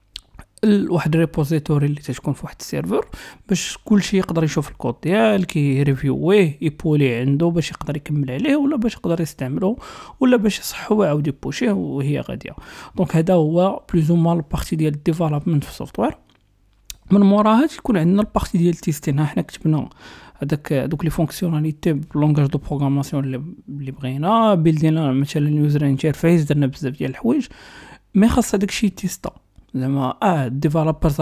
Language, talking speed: Arabic, 140 wpm